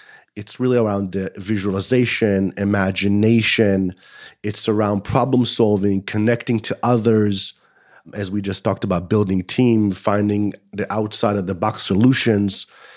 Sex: male